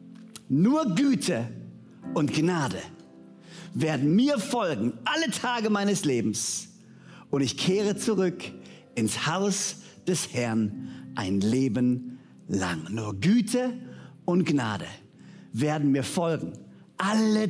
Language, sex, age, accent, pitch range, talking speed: German, male, 50-69, German, 130-190 Hz, 105 wpm